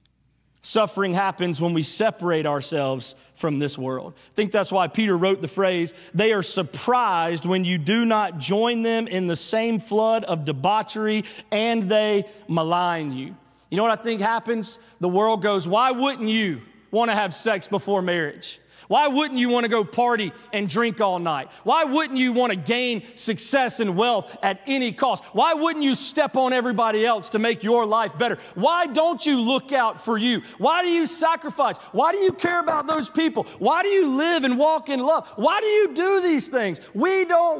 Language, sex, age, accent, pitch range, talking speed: English, male, 30-49, American, 200-270 Hz, 195 wpm